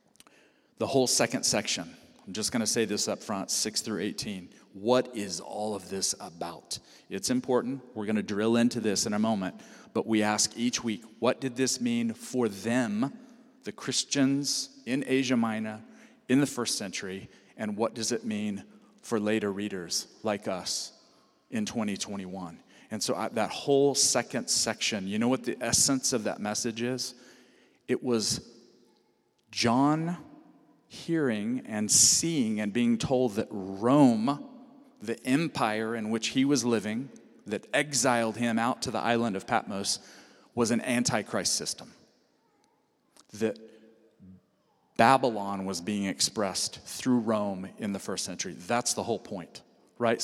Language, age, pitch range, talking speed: English, 40-59, 110-135 Hz, 150 wpm